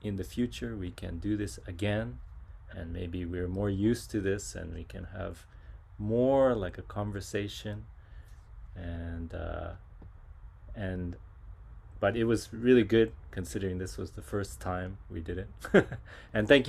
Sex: male